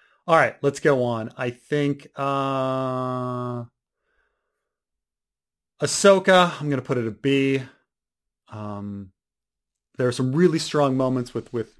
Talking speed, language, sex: 115 wpm, English, male